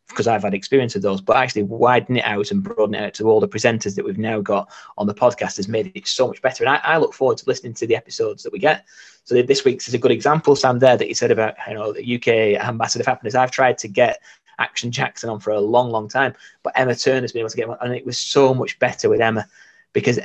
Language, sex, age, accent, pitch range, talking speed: English, male, 20-39, British, 115-155 Hz, 280 wpm